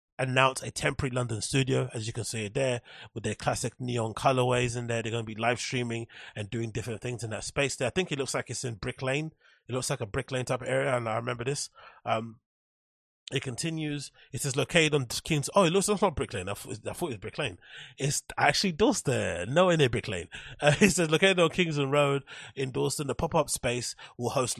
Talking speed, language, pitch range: 235 wpm, English, 120-140 Hz